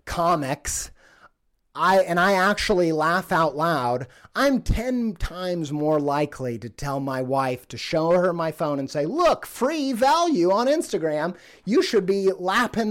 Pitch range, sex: 140-195 Hz, male